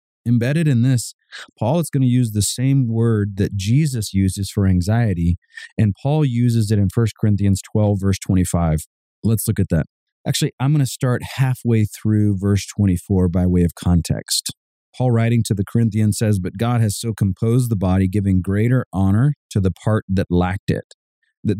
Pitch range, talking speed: 95-120 Hz, 185 wpm